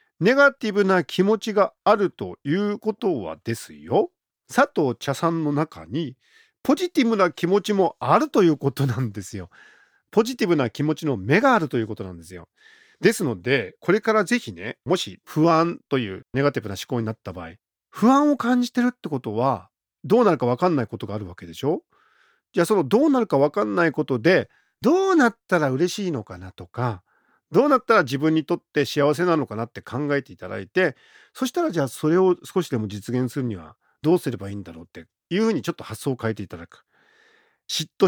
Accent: native